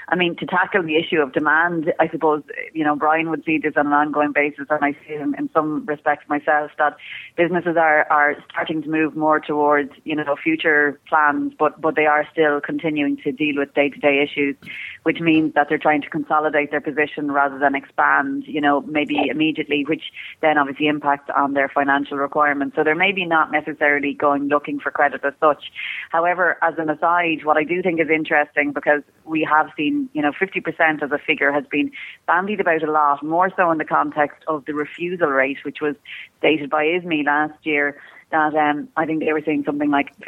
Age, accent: 30-49, Irish